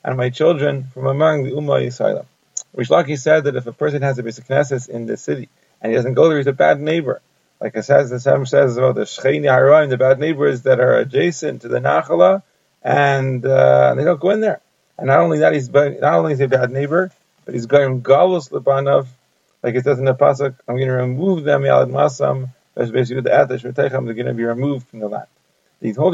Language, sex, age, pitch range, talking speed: English, male, 40-59, 130-150 Hz, 220 wpm